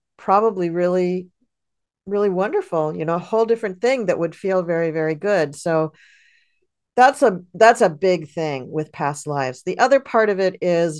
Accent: American